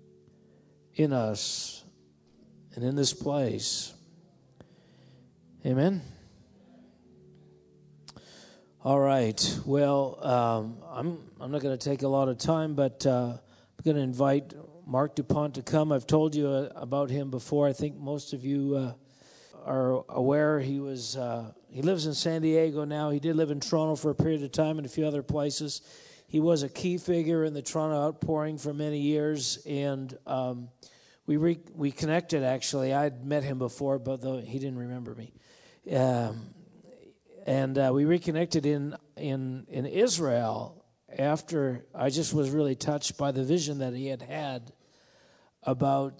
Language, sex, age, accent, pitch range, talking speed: English, male, 50-69, American, 125-150 Hz, 160 wpm